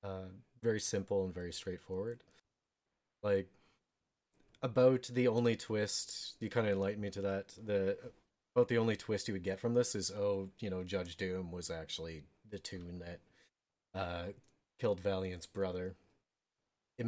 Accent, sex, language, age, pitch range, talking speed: American, male, English, 30-49, 95-110 Hz, 155 wpm